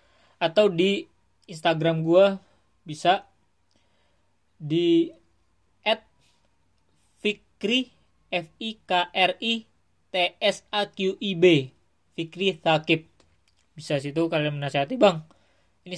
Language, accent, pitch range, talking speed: English, Indonesian, 125-165 Hz, 70 wpm